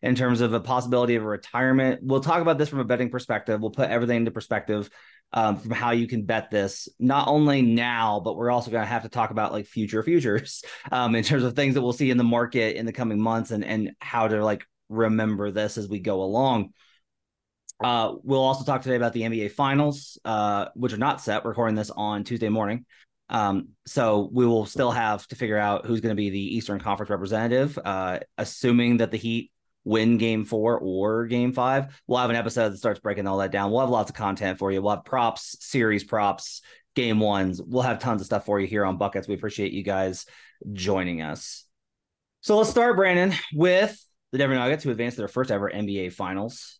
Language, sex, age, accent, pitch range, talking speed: English, male, 20-39, American, 105-125 Hz, 220 wpm